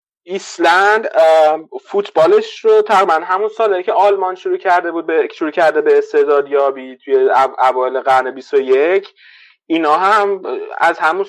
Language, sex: Persian, male